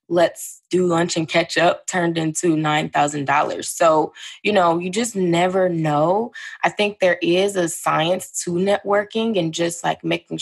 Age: 20-39